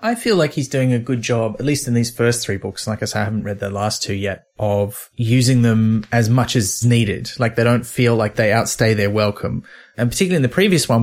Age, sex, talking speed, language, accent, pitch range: 30-49, male, 255 wpm, English, Australian, 105-125 Hz